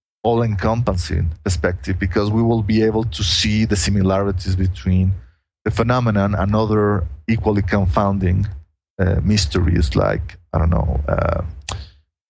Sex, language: male, English